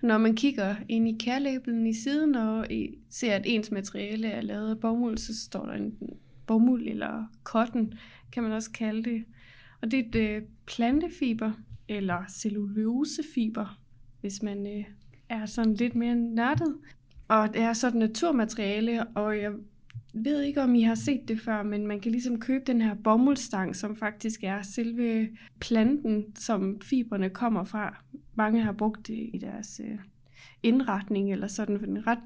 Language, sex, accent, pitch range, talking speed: Danish, female, native, 210-240 Hz, 165 wpm